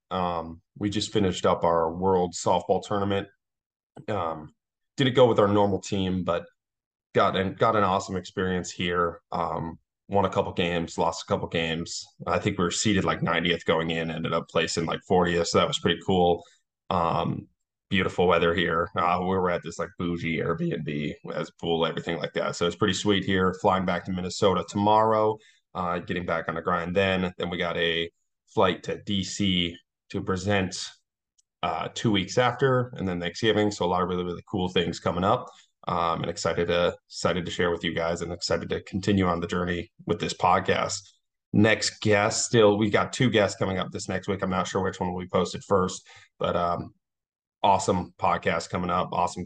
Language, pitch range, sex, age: English, 85-100 Hz, male, 20-39